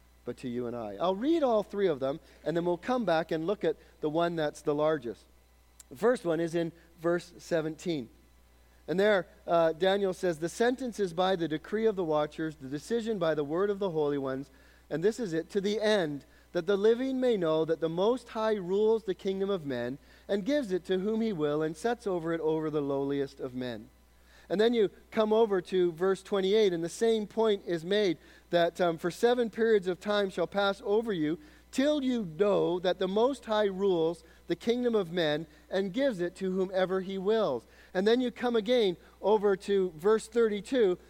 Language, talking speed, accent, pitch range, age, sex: English, 210 wpm, American, 155-215 Hz, 40-59, male